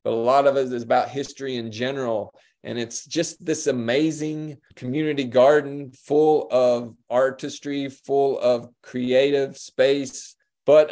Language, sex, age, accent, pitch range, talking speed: English, male, 30-49, American, 130-155 Hz, 135 wpm